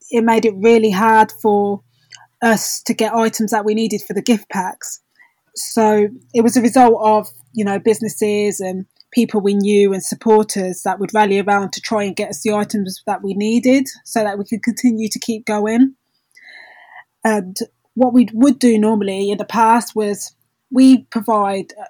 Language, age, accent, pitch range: English, 20-39, British, 200-230 Hz